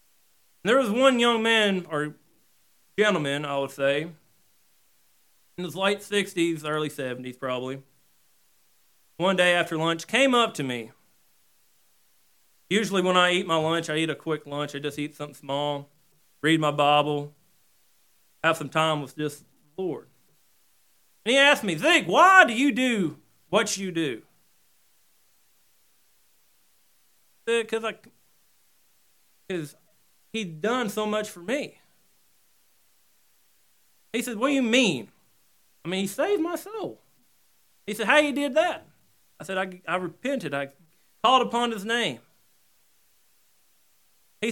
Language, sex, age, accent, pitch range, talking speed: English, male, 40-59, American, 155-230 Hz, 135 wpm